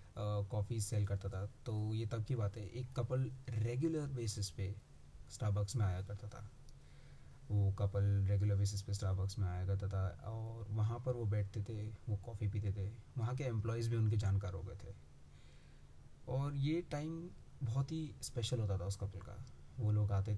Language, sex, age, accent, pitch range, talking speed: Hindi, male, 20-39, native, 100-120 Hz, 185 wpm